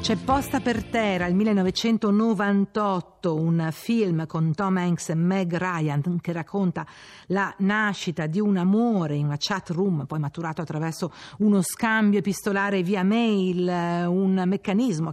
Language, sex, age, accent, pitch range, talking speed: Italian, female, 50-69, native, 160-205 Hz, 140 wpm